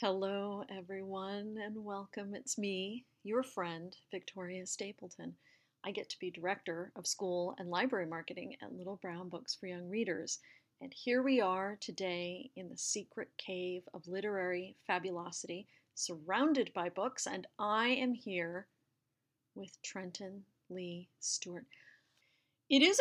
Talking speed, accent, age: 135 wpm, American, 40-59